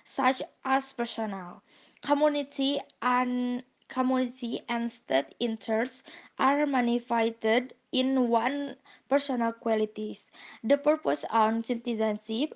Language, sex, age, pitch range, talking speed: Indonesian, female, 20-39, 220-250 Hz, 90 wpm